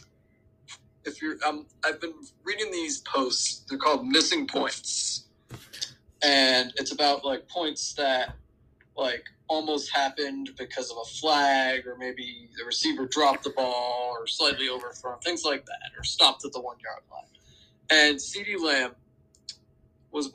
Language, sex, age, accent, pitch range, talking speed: English, male, 20-39, American, 130-160 Hz, 145 wpm